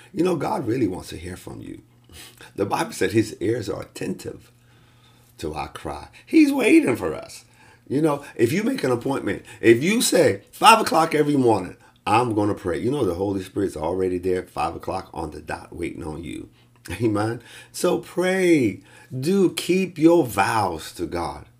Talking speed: 185 wpm